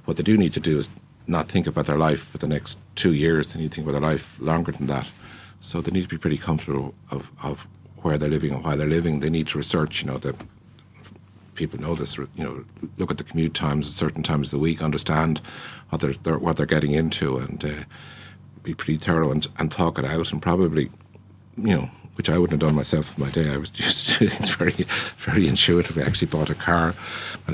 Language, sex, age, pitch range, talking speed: English, male, 50-69, 75-85 Hz, 240 wpm